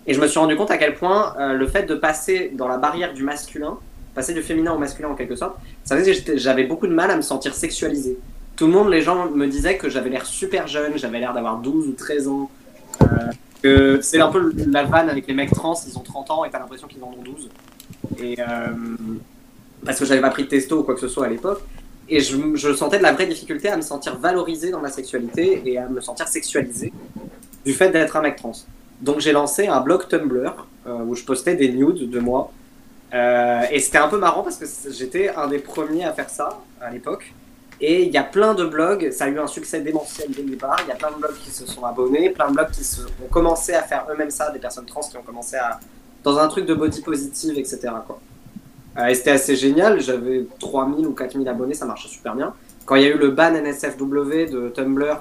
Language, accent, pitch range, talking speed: French, French, 130-155 Hz, 250 wpm